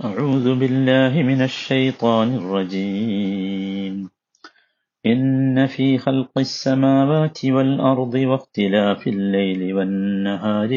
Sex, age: male, 50-69